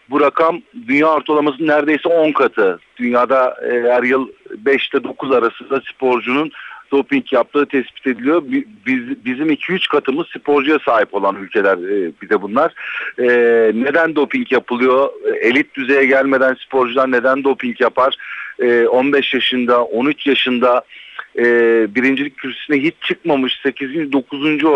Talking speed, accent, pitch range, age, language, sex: 130 wpm, native, 125-155 Hz, 50-69, Turkish, male